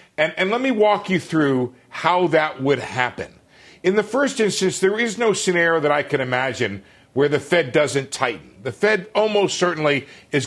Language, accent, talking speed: English, American, 190 wpm